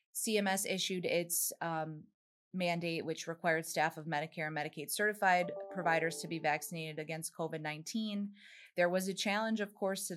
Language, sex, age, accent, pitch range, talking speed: English, female, 20-39, American, 165-195 Hz, 155 wpm